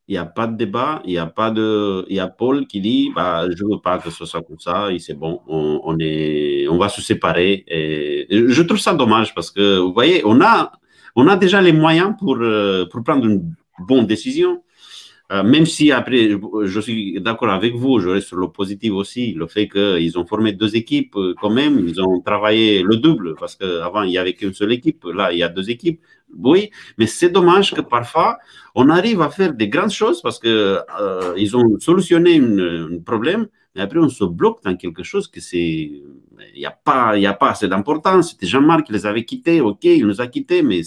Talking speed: 220 wpm